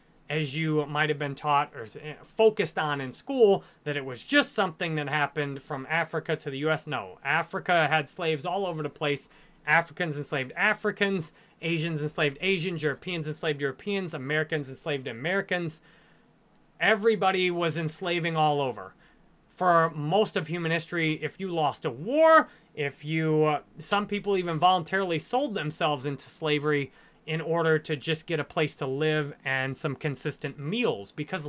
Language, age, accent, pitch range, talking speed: English, 30-49, American, 150-190 Hz, 160 wpm